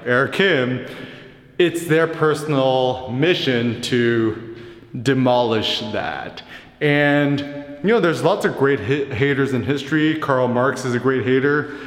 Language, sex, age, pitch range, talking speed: English, male, 20-39, 120-150 Hz, 130 wpm